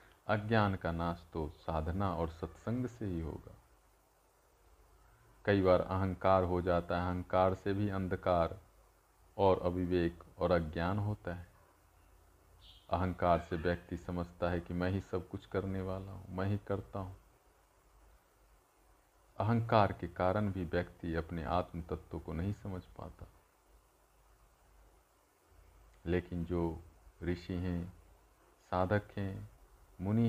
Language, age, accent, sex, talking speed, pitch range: Hindi, 50-69, native, male, 125 wpm, 85-100 Hz